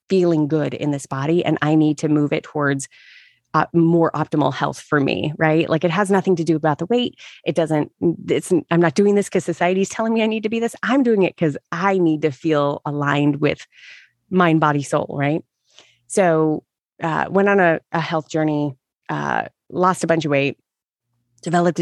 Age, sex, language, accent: 30-49, female, English, American